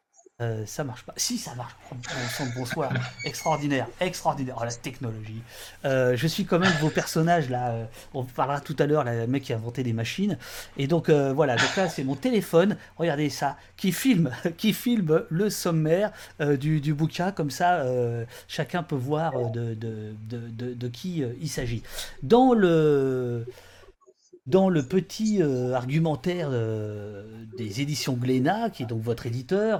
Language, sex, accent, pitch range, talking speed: French, male, French, 125-175 Hz, 175 wpm